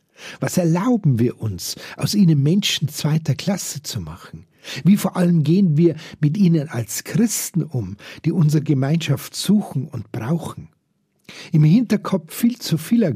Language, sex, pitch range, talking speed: German, male, 140-180 Hz, 145 wpm